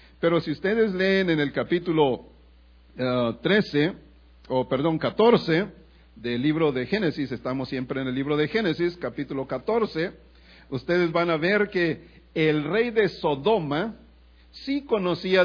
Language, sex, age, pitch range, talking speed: English, male, 50-69, 120-175 Hz, 145 wpm